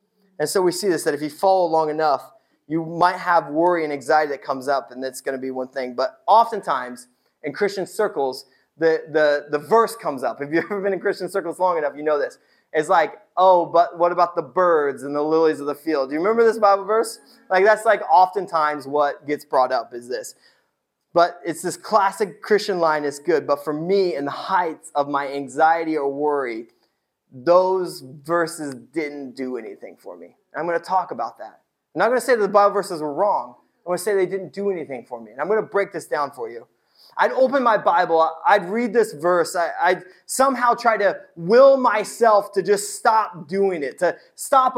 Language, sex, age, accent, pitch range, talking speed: English, male, 20-39, American, 150-210 Hz, 220 wpm